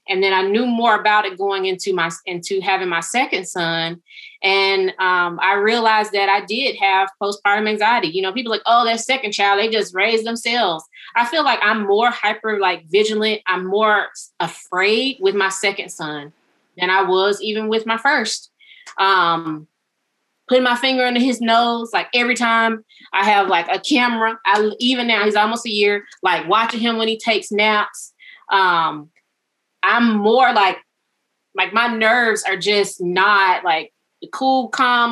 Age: 20-39